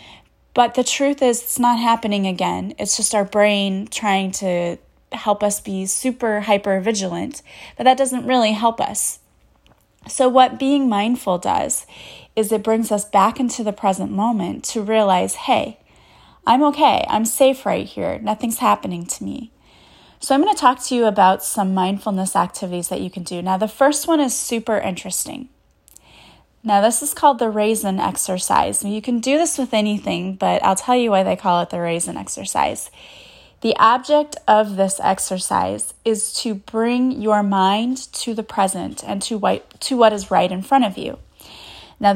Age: 30-49